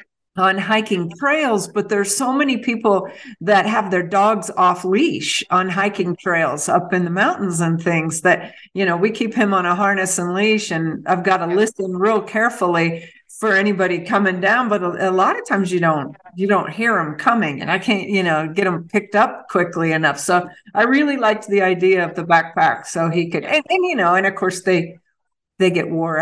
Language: English